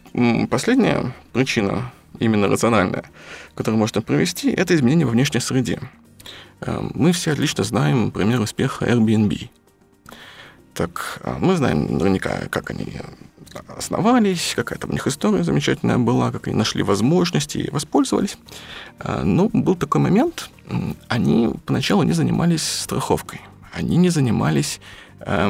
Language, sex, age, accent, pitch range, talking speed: Russian, male, 20-39, native, 110-155 Hz, 120 wpm